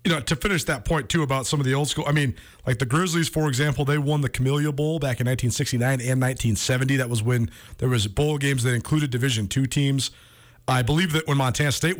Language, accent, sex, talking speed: English, American, male, 240 wpm